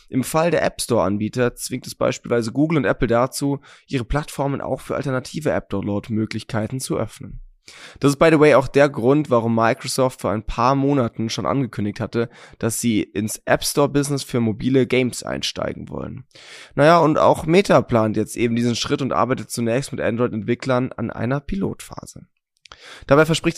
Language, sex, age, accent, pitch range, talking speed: German, male, 20-39, German, 110-140 Hz, 165 wpm